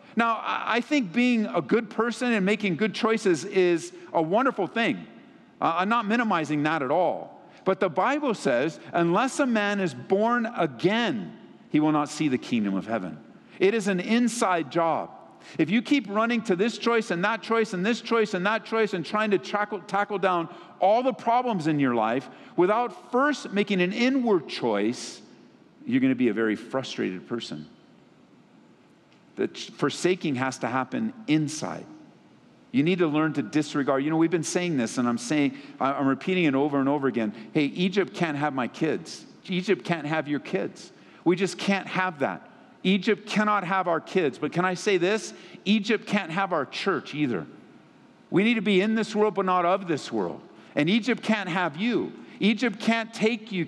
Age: 50-69